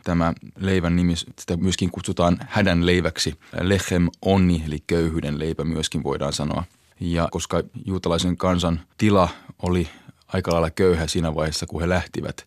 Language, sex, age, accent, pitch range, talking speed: Finnish, male, 20-39, native, 85-95 Hz, 145 wpm